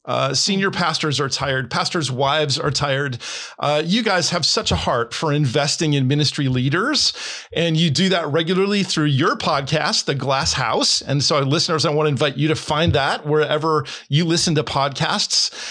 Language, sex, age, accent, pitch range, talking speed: English, male, 40-59, American, 145-190 Hz, 185 wpm